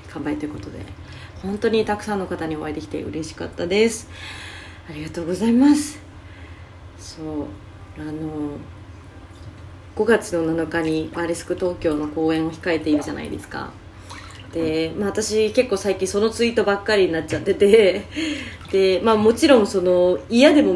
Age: 20-39